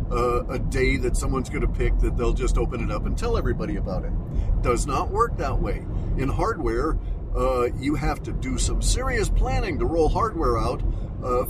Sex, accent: male, American